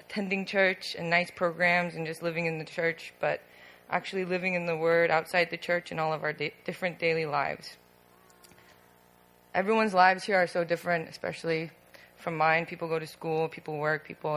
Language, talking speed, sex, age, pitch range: English, 180 wpm, female, 20-39, 150-185 Hz